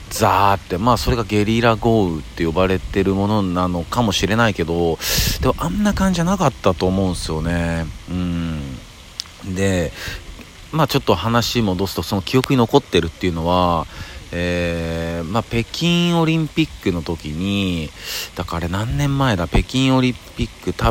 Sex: male